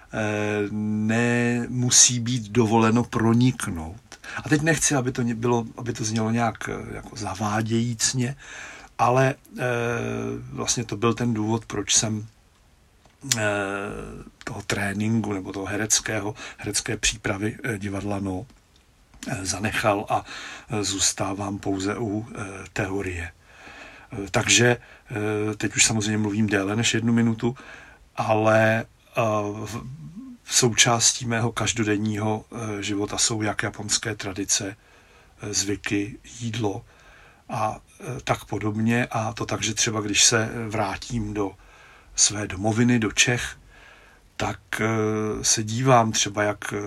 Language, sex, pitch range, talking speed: Czech, male, 100-115 Hz, 100 wpm